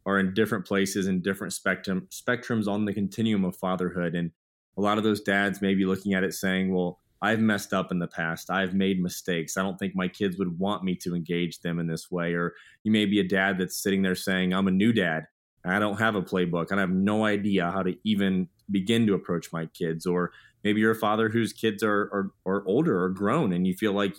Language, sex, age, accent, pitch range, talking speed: English, male, 20-39, American, 95-105 Hz, 245 wpm